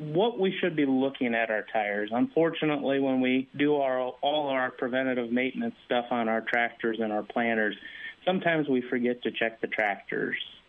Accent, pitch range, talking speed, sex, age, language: American, 115-140 Hz, 175 wpm, male, 30-49, English